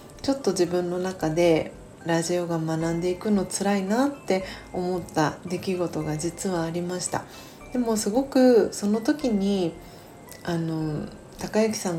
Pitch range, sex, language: 165-210 Hz, female, Japanese